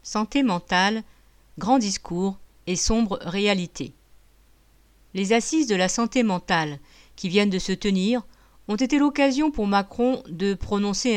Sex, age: female, 50-69